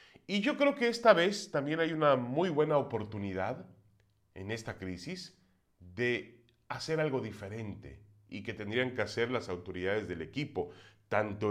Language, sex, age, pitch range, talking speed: Spanish, male, 30-49, 105-165 Hz, 150 wpm